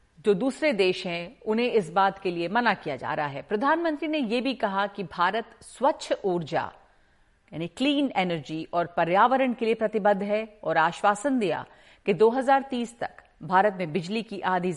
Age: 50-69